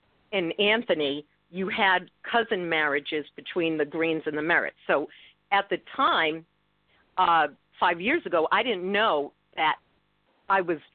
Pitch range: 160-200 Hz